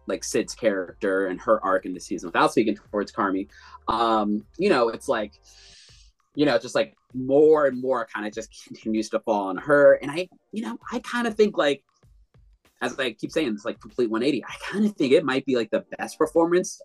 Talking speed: 220 wpm